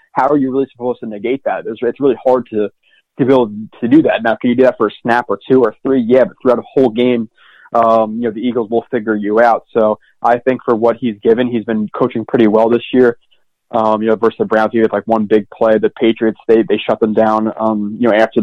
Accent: American